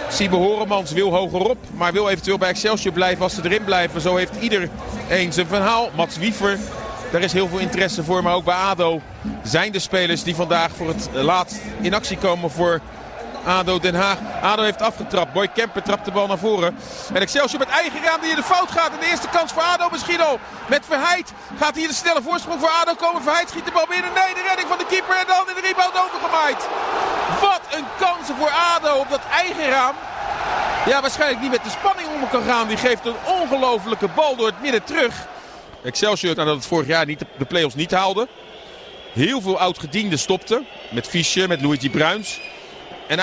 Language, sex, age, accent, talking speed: Dutch, male, 40-59, Dutch, 210 wpm